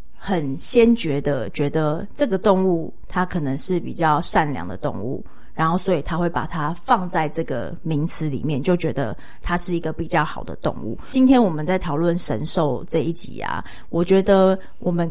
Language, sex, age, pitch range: Chinese, female, 30-49, 165-205 Hz